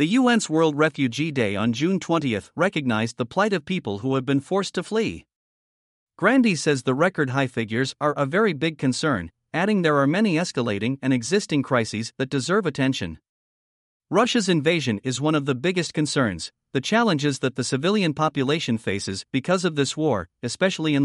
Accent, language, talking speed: American, English, 175 wpm